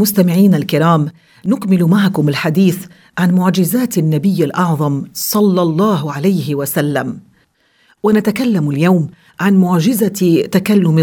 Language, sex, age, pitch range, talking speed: English, female, 50-69, 160-190 Hz, 100 wpm